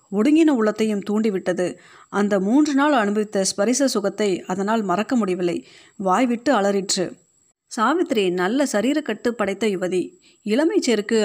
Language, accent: Tamil, native